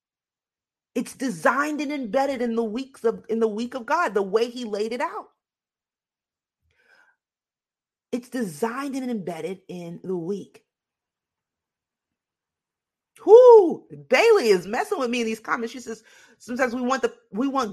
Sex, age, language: female, 40-59, English